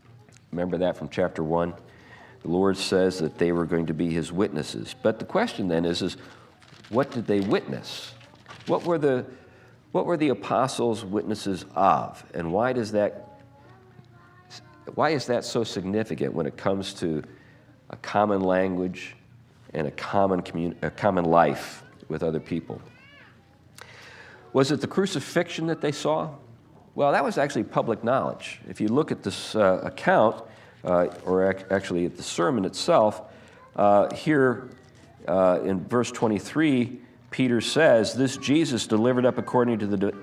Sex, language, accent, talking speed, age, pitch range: male, English, American, 155 wpm, 50-69, 95-130 Hz